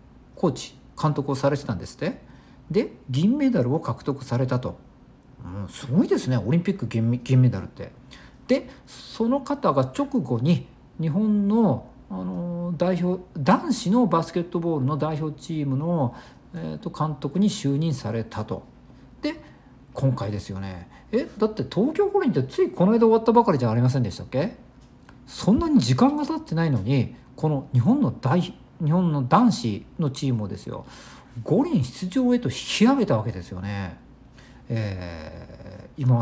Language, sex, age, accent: Japanese, male, 50-69, native